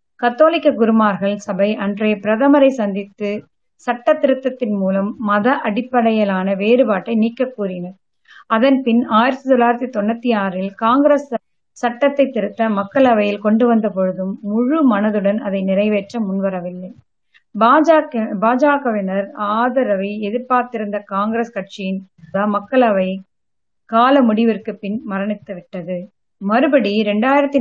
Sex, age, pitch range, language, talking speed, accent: female, 30-49, 200-240 Hz, Tamil, 90 wpm, native